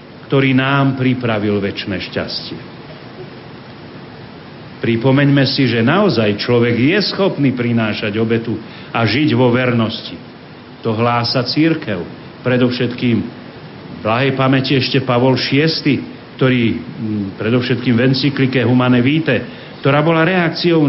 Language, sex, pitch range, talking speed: Slovak, male, 115-140 Hz, 110 wpm